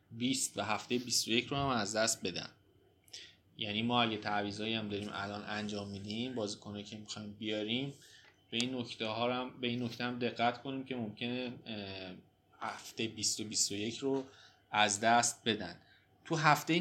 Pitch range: 105-130 Hz